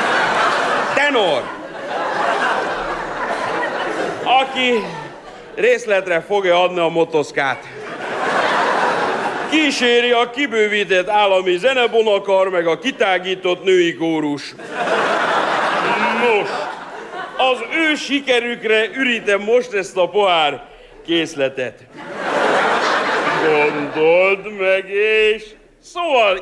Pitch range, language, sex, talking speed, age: 175-240 Hz, Hungarian, male, 70 wpm, 60-79